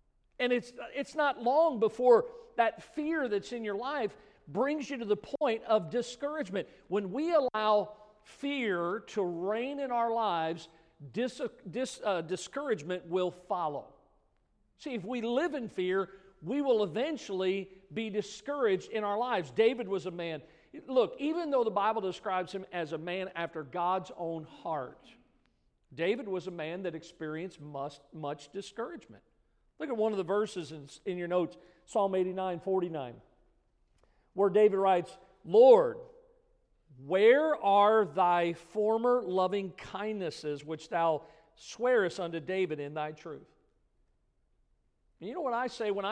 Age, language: 50-69, English